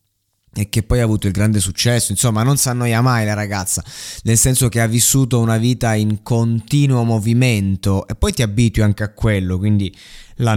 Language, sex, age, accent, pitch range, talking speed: Italian, male, 20-39, native, 100-120 Hz, 195 wpm